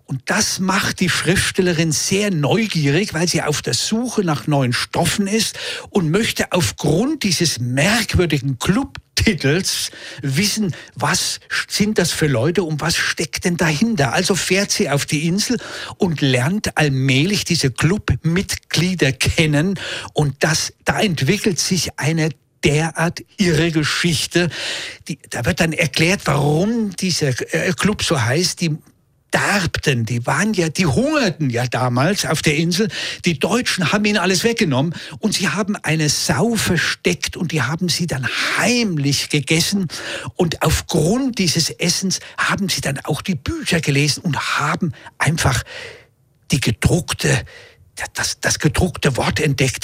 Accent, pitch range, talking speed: German, 140-190 Hz, 140 wpm